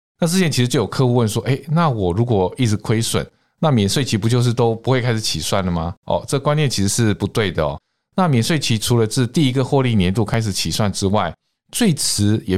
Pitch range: 100-135 Hz